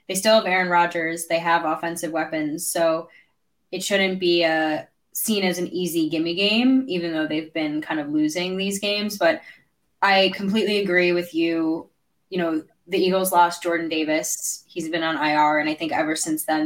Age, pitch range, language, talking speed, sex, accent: 10-29, 165-210 Hz, English, 185 wpm, female, American